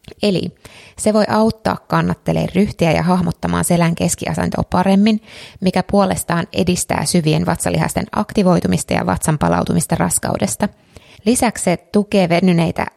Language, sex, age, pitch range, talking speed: Finnish, female, 20-39, 160-190 Hz, 115 wpm